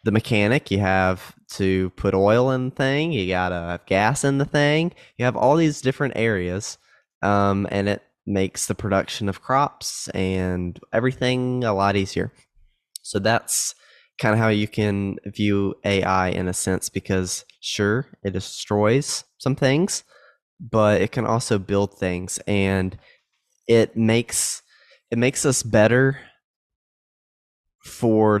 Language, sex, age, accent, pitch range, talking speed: English, male, 20-39, American, 95-120 Hz, 145 wpm